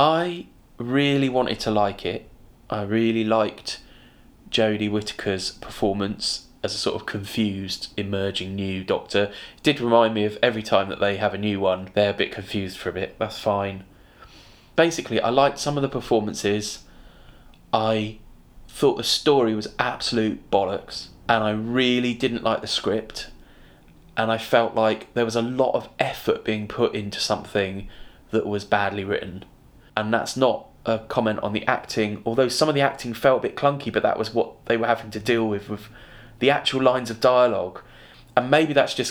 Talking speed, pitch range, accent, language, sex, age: 180 wpm, 105-125 Hz, British, English, male, 20-39